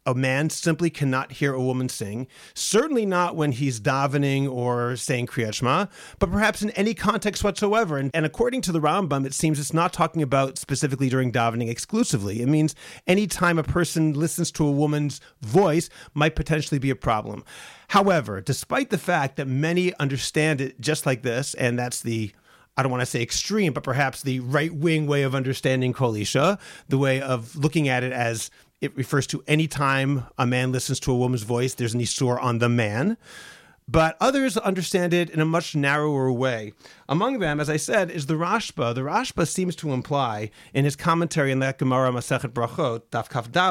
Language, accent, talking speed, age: English, American, 190 wpm, 40-59